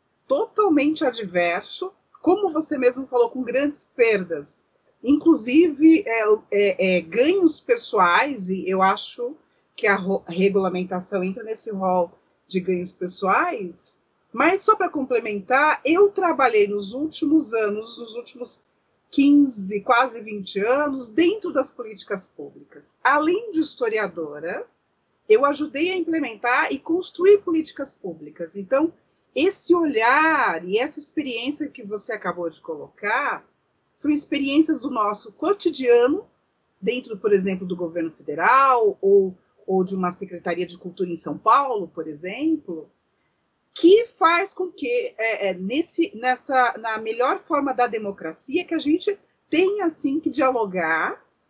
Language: Portuguese